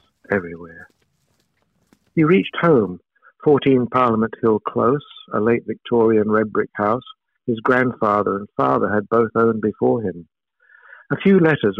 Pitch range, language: 100-125 Hz, English